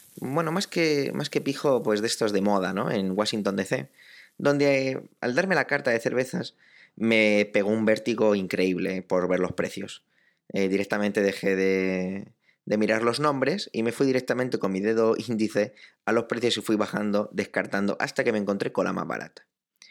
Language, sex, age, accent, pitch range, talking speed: Spanish, male, 20-39, Spanish, 100-145 Hz, 190 wpm